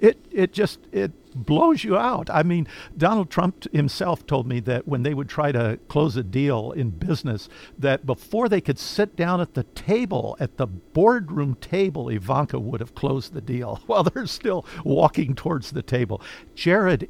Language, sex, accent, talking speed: English, male, American, 185 wpm